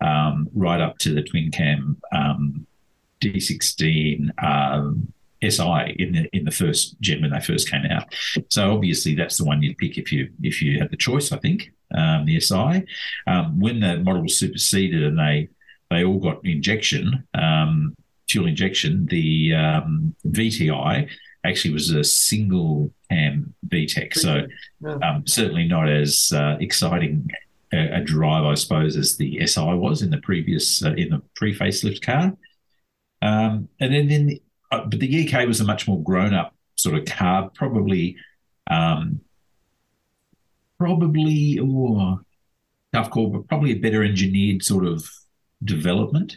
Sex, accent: male, Australian